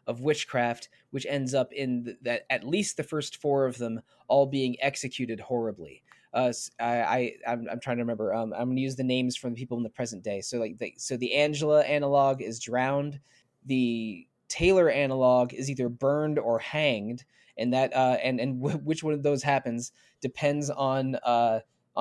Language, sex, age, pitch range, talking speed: English, male, 20-39, 120-135 Hz, 195 wpm